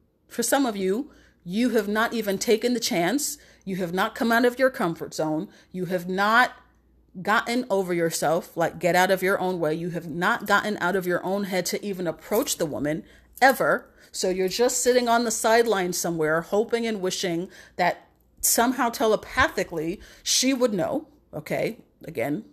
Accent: American